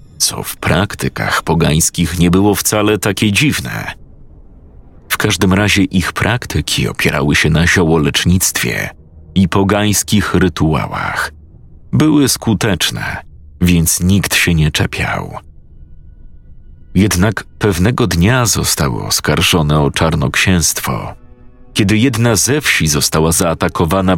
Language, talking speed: Polish, 100 wpm